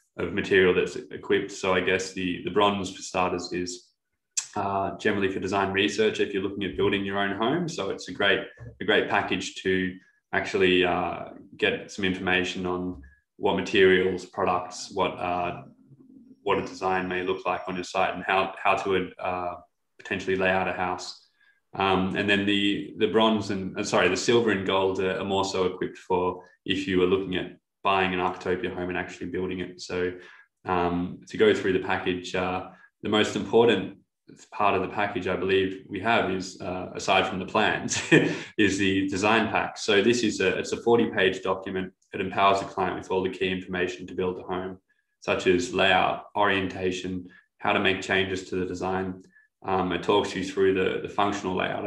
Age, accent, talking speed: 20-39, Australian, 190 wpm